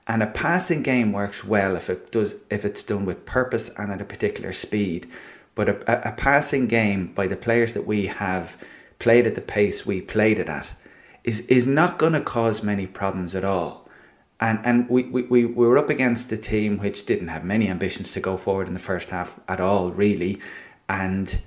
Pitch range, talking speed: 95-115 Hz, 210 wpm